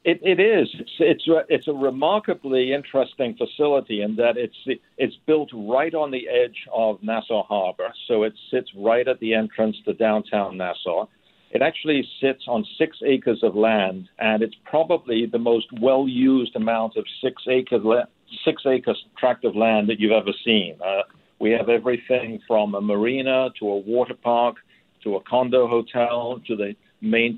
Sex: male